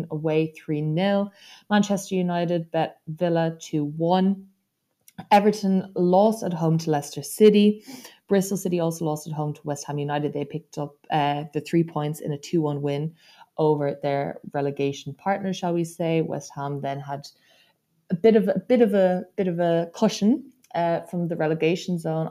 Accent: Irish